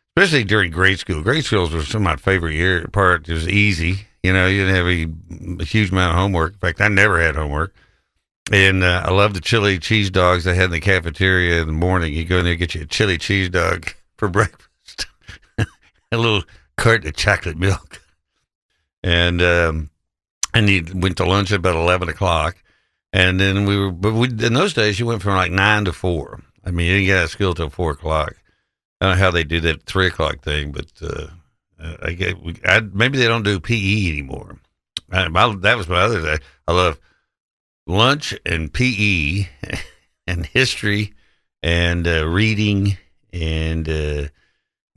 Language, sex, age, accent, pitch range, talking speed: English, male, 60-79, American, 85-100 Hz, 195 wpm